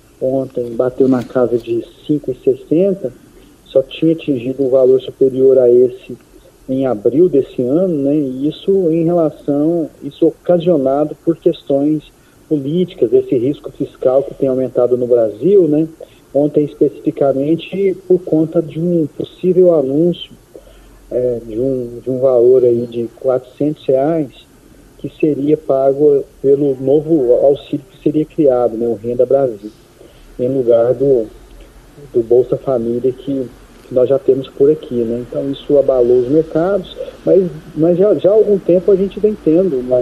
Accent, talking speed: Brazilian, 145 wpm